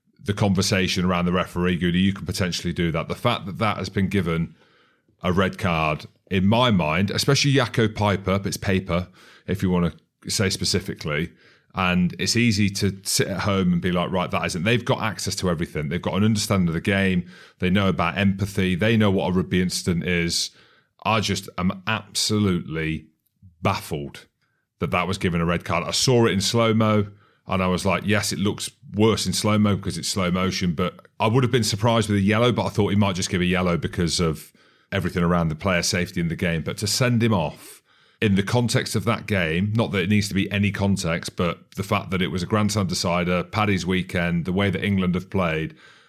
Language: English